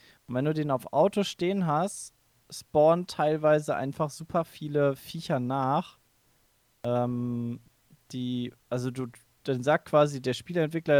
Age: 20-39